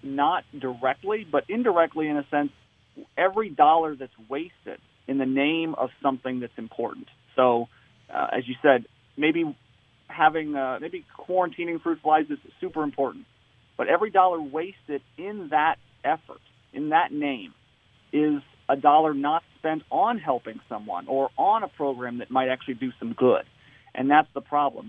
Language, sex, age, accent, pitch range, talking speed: English, male, 40-59, American, 125-155 Hz, 155 wpm